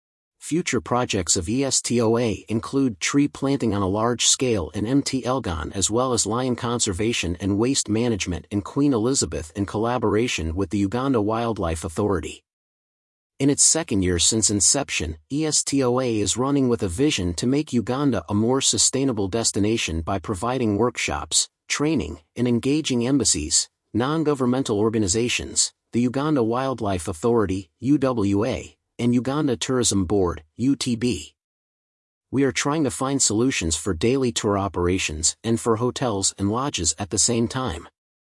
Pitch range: 95-125 Hz